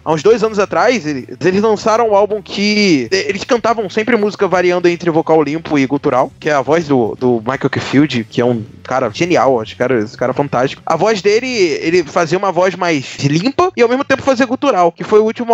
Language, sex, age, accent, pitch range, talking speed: Portuguese, male, 20-39, Brazilian, 170-230 Hz, 230 wpm